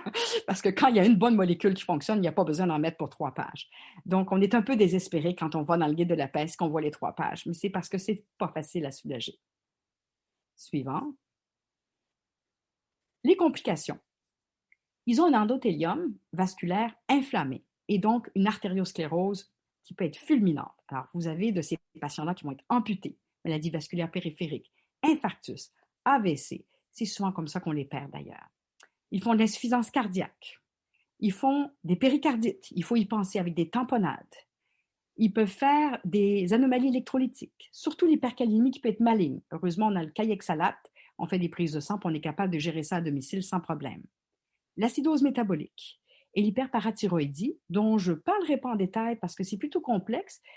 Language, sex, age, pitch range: French, female, 50-69, 175-240 Hz